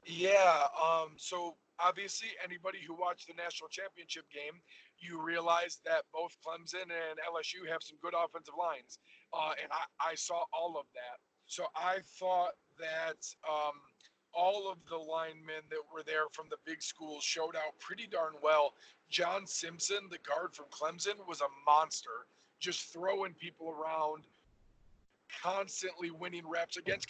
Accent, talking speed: American, 155 wpm